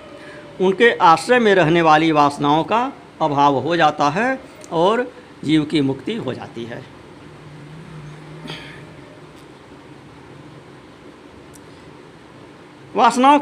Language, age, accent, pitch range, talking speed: Hindi, 50-69, native, 160-240 Hz, 85 wpm